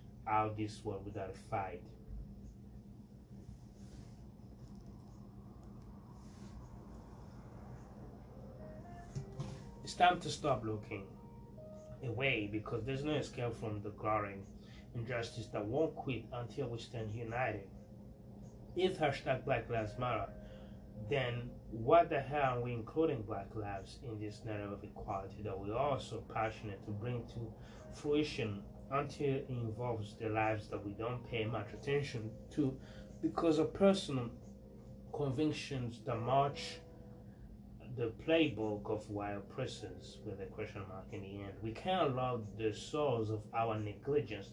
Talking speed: 125 wpm